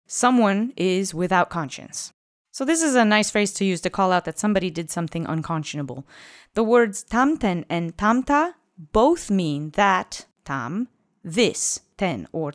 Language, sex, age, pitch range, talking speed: English, female, 30-49, 160-210 Hz, 155 wpm